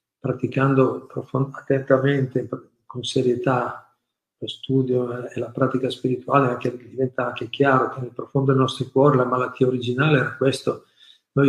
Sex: male